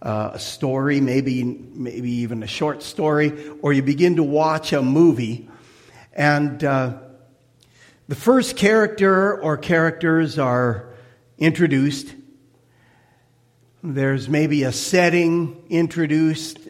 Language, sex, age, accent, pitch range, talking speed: English, male, 50-69, American, 130-175 Hz, 110 wpm